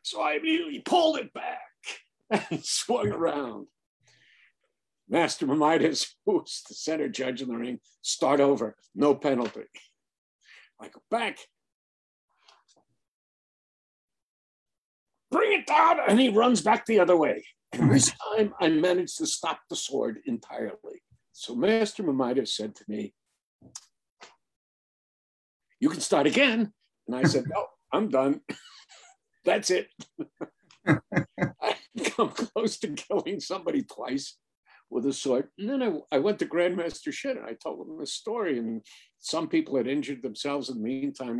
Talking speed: 140 wpm